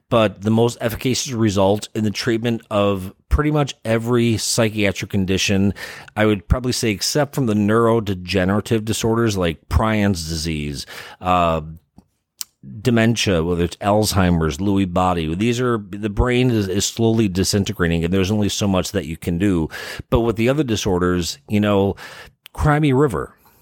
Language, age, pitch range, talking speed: English, 30-49, 95-125 Hz, 150 wpm